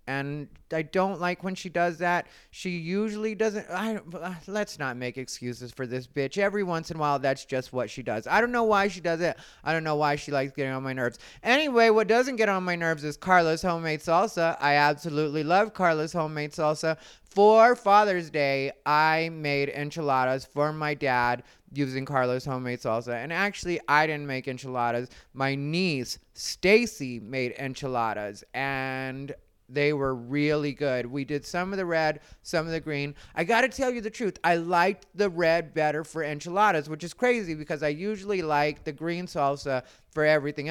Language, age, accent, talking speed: English, 30-49, American, 190 wpm